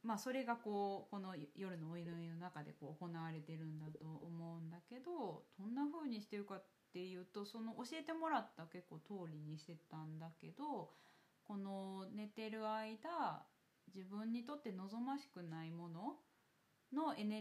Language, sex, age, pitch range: Japanese, female, 20-39, 165-225 Hz